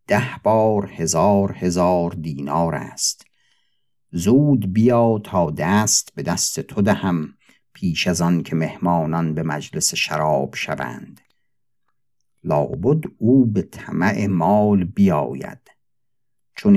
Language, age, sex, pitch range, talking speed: Persian, 50-69, male, 85-125 Hz, 105 wpm